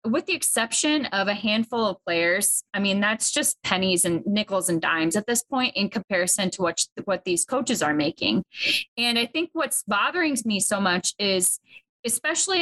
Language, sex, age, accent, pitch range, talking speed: English, female, 20-39, American, 195-260 Hz, 185 wpm